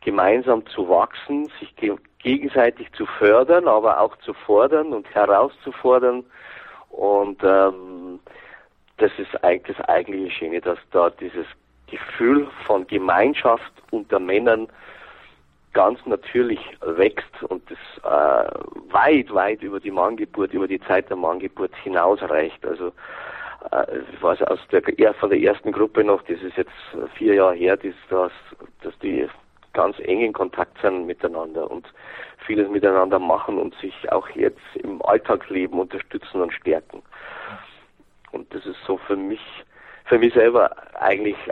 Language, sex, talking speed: German, male, 135 wpm